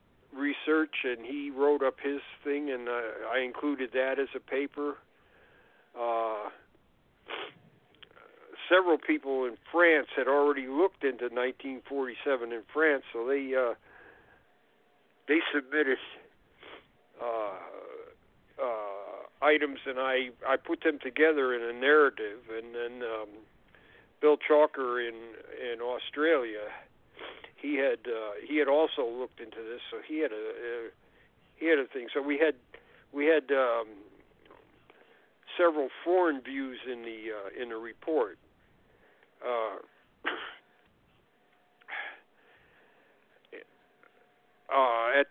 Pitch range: 125-155 Hz